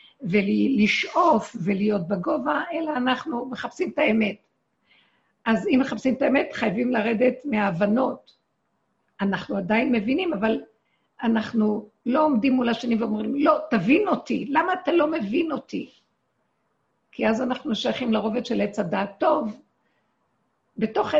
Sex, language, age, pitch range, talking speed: female, Hebrew, 50-69, 210-275 Hz, 120 wpm